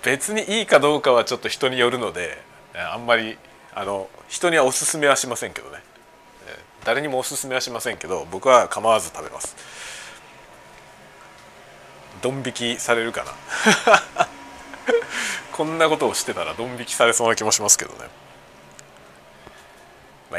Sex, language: male, Japanese